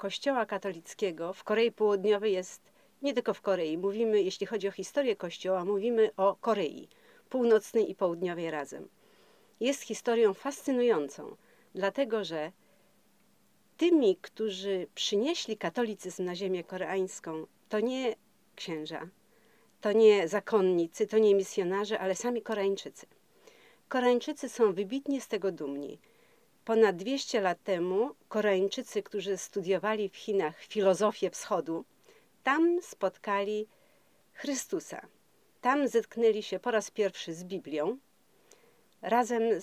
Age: 40-59